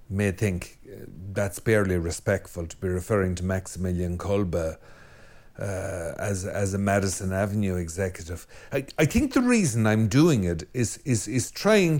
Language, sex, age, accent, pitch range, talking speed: English, male, 60-79, Irish, 100-140 Hz, 150 wpm